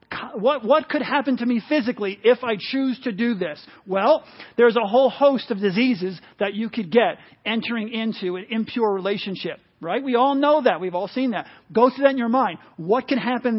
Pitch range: 205-260 Hz